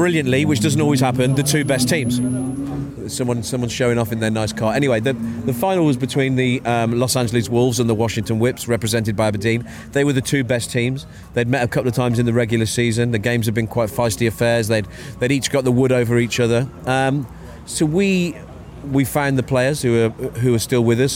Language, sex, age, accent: English, male, 30-49, British